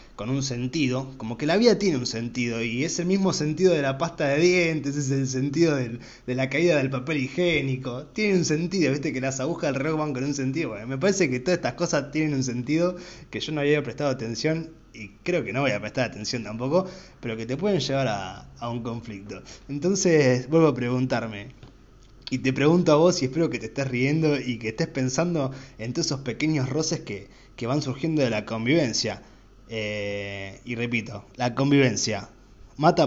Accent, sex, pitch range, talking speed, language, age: Argentinian, male, 120-160 Hz, 205 wpm, Spanish, 20-39